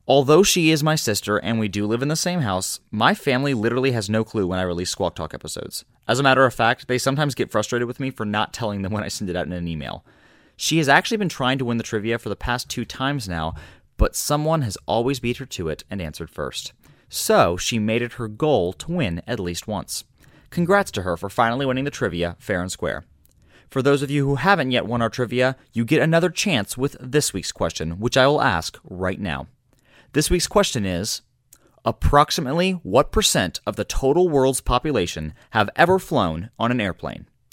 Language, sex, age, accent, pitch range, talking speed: English, male, 30-49, American, 100-145 Hz, 220 wpm